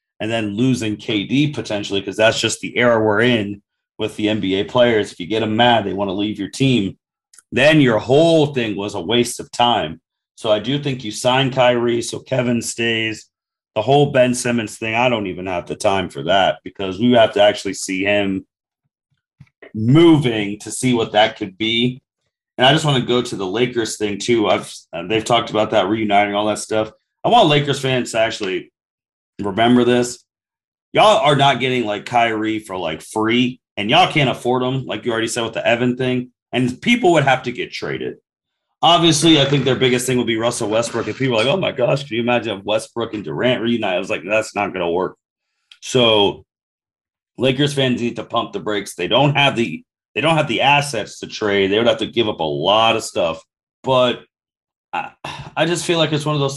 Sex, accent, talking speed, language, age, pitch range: male, American, 215 wpm, English, 30-49, 110-130 Hz